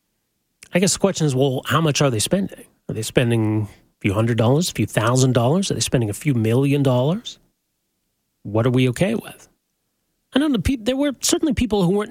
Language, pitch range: English, 120-165 Hz